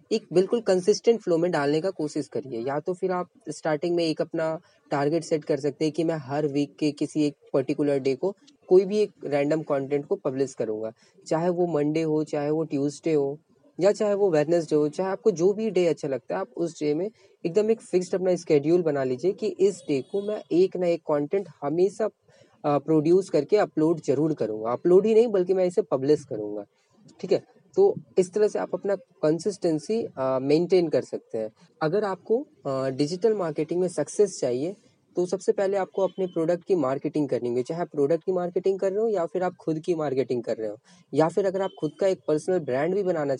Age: 20-39